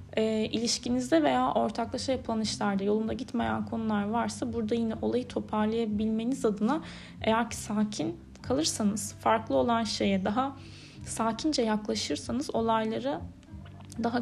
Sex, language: female, Turkish